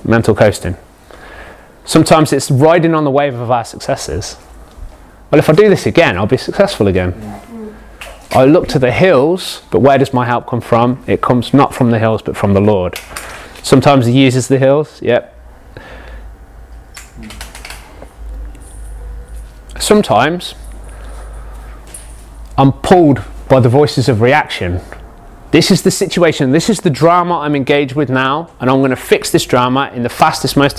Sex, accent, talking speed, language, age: male, British, 155 wpm, English, 20-39